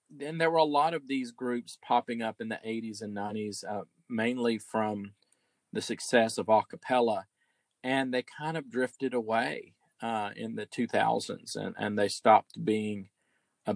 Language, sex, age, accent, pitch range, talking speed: English, male, 40-59, American, 110-135 Hz, 170 wpm